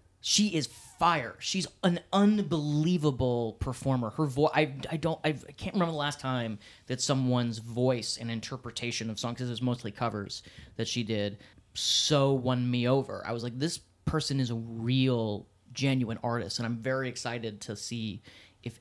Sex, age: male, 30-49